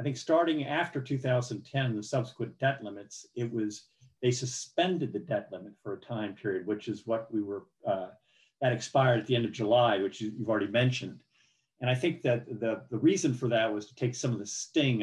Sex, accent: male, American